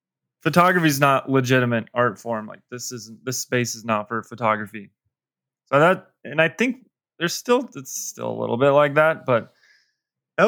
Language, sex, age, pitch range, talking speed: English, male, 20-39, 115-140 Hz, 180 wpm